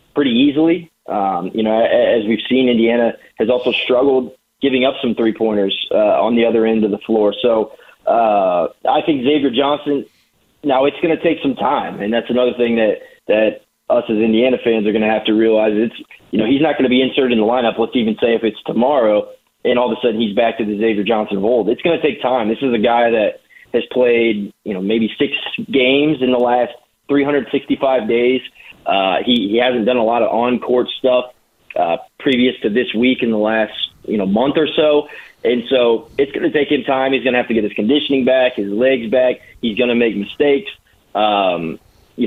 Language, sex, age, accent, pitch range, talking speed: English, male, 20-39, American, 115-140 Hz, 220 wpm